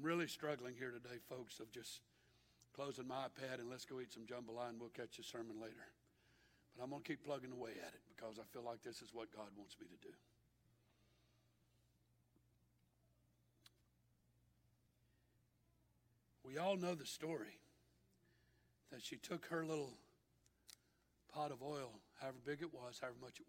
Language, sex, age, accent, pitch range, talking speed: English, male, 60-79, American, 115-140 Hz, 160 wpm